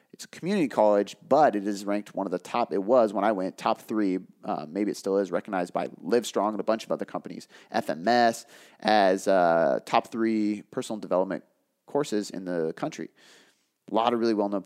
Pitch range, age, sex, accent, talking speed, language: 100-115 Hz, 30-49, male, American, 200 wpm, English